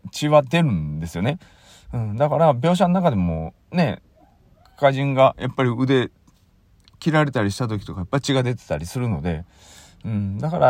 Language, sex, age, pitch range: Japanese, male, 40-59, 95-140 Hz